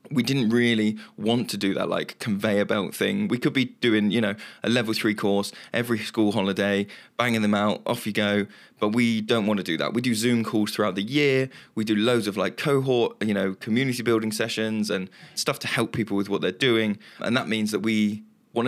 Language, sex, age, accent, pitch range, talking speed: English, male, 20-39, British, 105-120 Hz, 225 wpm